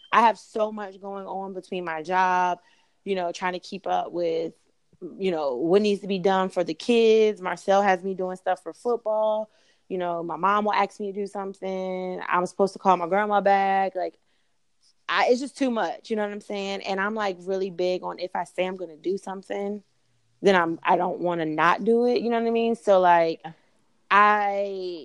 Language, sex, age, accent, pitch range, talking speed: English, female, 20-39, American, 170-200 Hz, 220 wpm